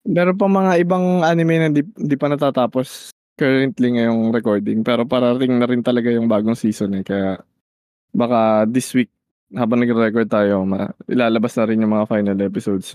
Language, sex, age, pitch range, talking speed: Filipino, male, 20-39, 120-155 Hz, 170 wpm